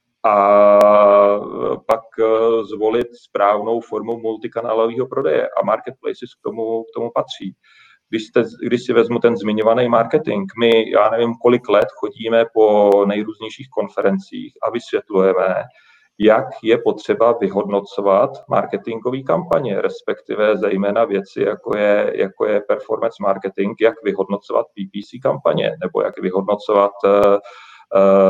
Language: Czech